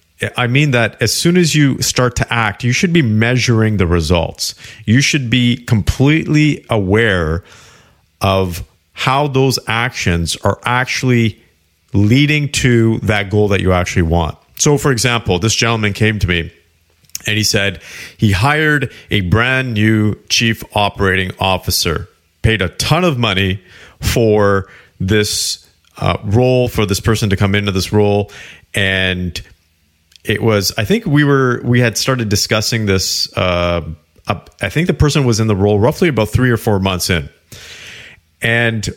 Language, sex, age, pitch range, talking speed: English, male, 40-59, 95-125 Hz, 155 wpm